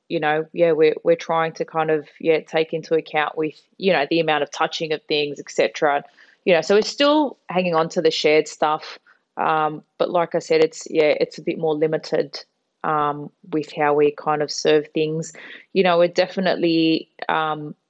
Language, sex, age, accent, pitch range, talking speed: English, female, 20-39, Australian, 155-180 Hz, 200 wpm